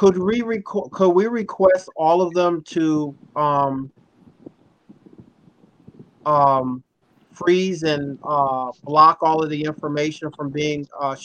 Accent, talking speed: American, 105 wpm